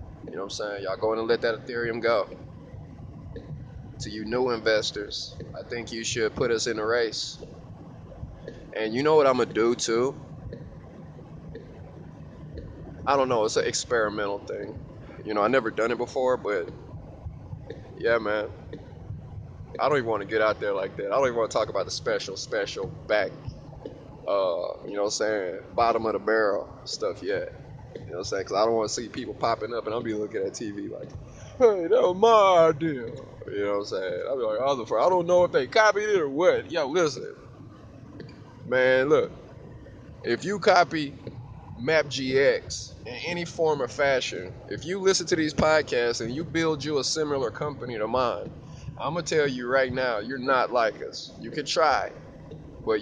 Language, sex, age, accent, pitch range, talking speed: English, male, 20-39, American, 115-180 Hz, 195 wpm